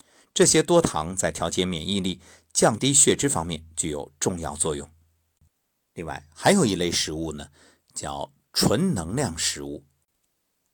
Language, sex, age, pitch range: Chinese, male, 50-69, 80-105 Hz